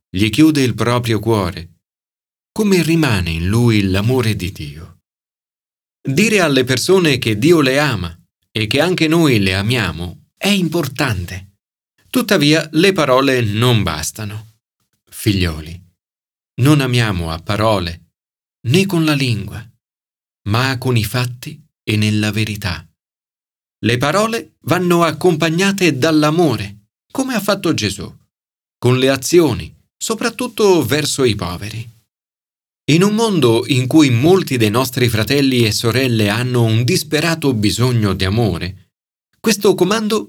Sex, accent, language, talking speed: male, native, Italian, 125 wpm